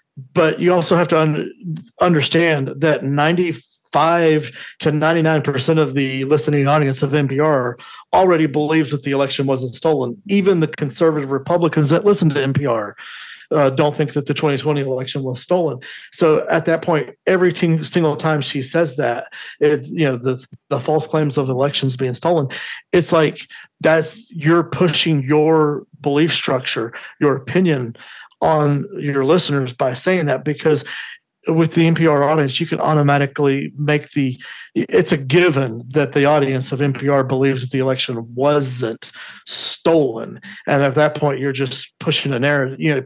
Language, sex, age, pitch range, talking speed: English, male, 40-59, 140-160 Hz, 160 wpm